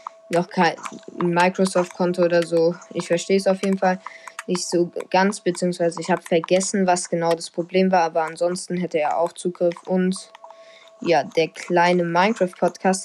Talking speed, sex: 155 wpm, female